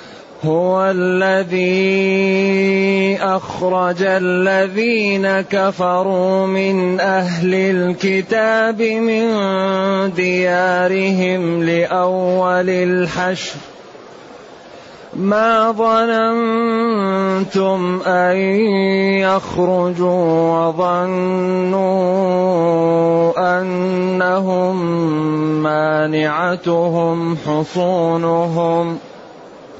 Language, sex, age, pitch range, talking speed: Arabic, male, 30-49, 180-195 Hz, 40 wpm